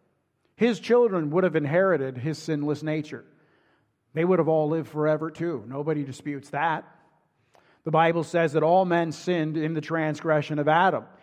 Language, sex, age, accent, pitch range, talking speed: English, male, 50-69, American, 165-230 Hz, 160 wpm